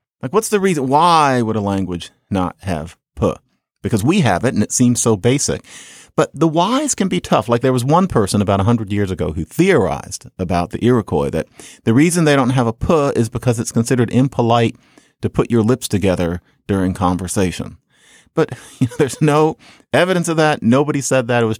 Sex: male